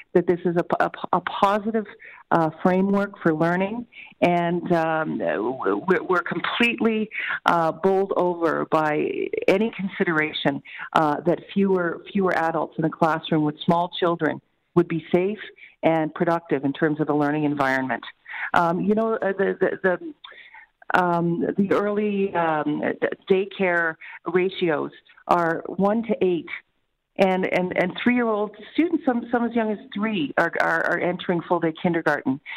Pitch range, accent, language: 165-210 Hz, American, English